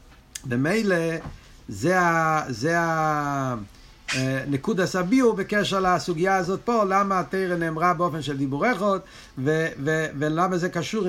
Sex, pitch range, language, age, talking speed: male, 145-195 Hz, Hebrew, 50-69, 110 wpm